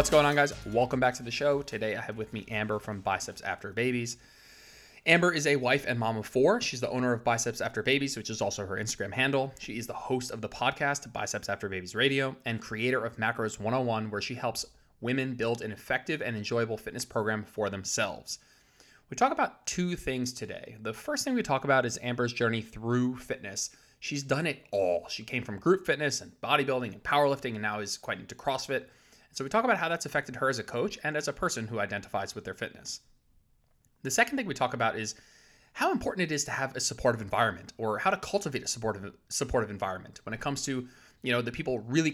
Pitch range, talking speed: 110-140 Hz, 225 wpm